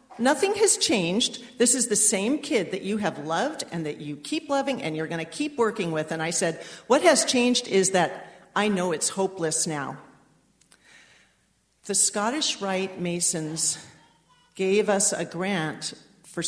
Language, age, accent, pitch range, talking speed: English, 50-69, American, 175-230 Hz, 170 wpm